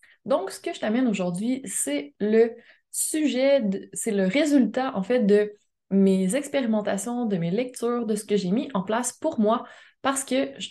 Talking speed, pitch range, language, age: 180 wpm, 205-260 Hz, French, 20-39